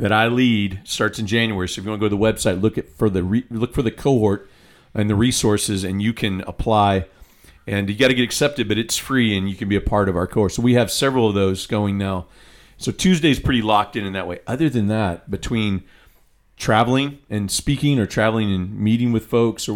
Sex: male